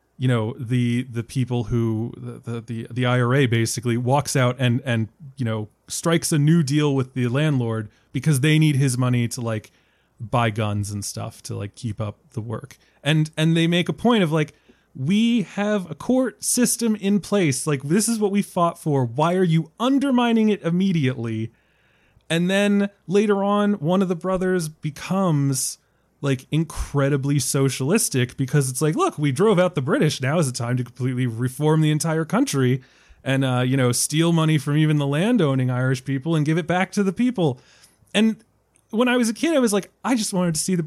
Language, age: English, 20-39